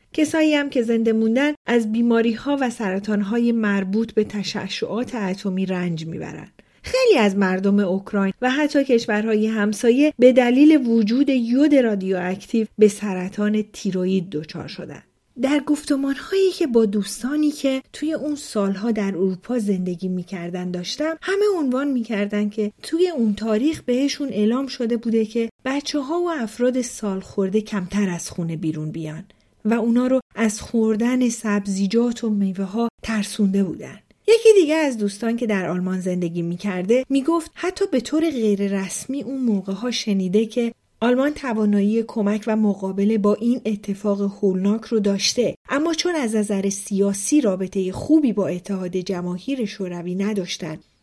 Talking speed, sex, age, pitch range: 145 wpm, female, 40-59, 200-255 Hz